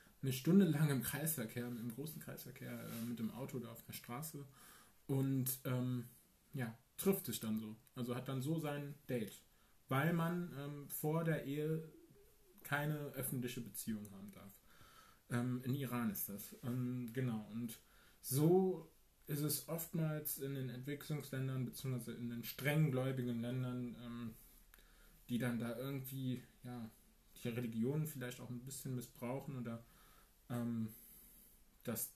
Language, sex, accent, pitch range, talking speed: German, male, German, 115-135 Hz, 140 wpm